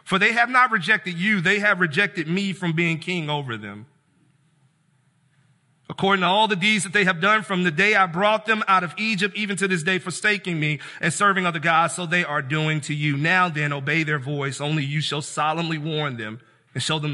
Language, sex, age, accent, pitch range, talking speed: English, male, 40-59, American, 155-215 Hz, 220 wpm